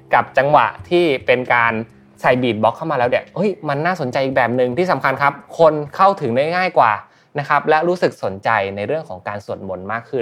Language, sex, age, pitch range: Thai, male, 20-39, 115-160 Hz